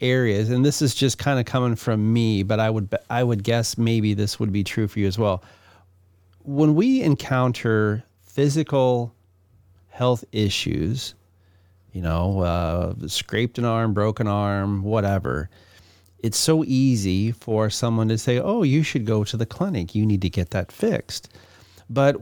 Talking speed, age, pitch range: 165 wpm, 40-59, 100-125 Hz